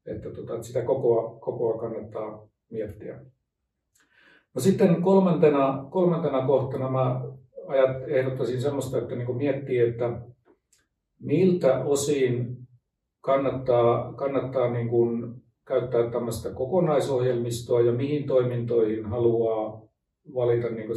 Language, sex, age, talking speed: Finnish, male, 50-69, 90 wpm